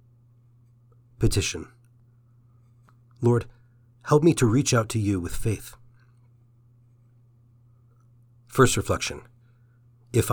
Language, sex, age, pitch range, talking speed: English, male, 40-59, 115-125 Hz, 80 wpm